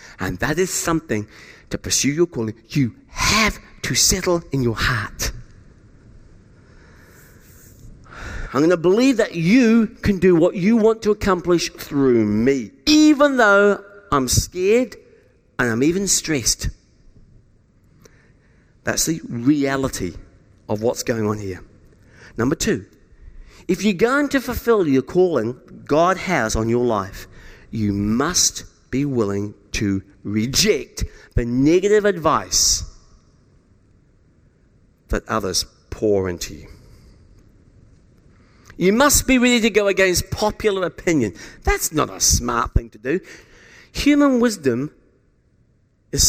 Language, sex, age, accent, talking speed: English, male, 50-69, British, 120 wpm